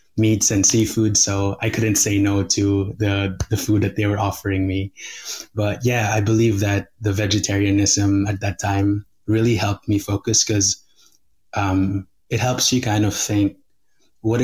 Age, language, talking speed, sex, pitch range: 20-39, English, 165 wpm, male, 100-110 Hz